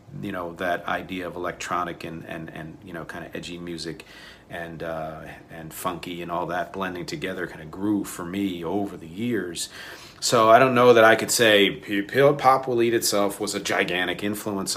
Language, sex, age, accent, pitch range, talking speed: English, male, 40-59, American, 90-110 Hz, 195 wpm